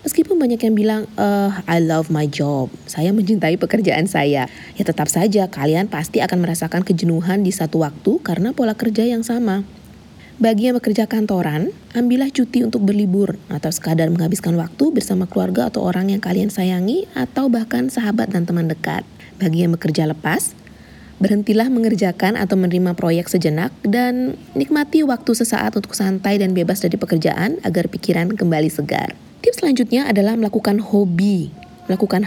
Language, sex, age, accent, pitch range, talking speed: Indonesian, female, 20-39, native, 170-235 Hz, 155 wpm